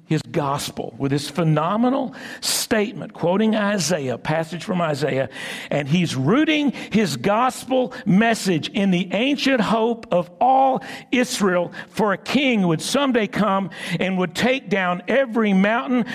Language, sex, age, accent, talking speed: English, male, 60-79, American, 140 wpm